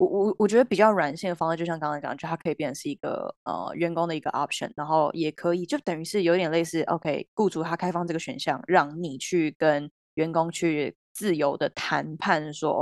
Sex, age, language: female, 20-39, Chinese